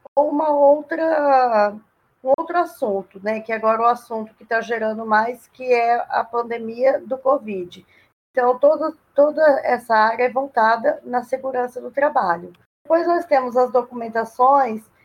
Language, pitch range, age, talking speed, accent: Portuguese, 235-290 Hz, 20-39, 150 wpm, Brazilian